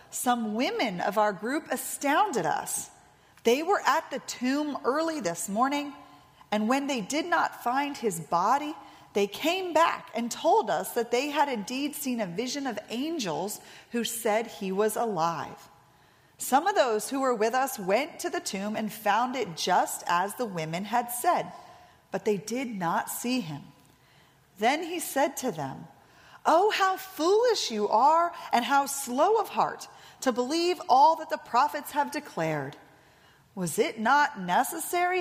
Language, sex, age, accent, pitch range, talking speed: English, female, 40-59, American, 205-295 Hz, 165 wpm